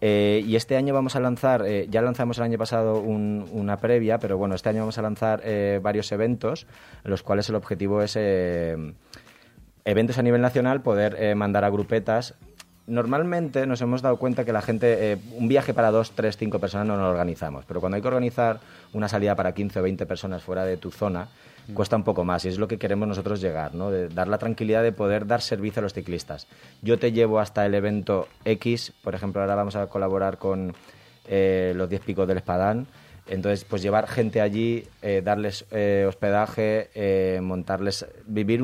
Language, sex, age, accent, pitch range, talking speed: Spanish, male, 30-49, Spanish, 95-115 Hz, 200 wpm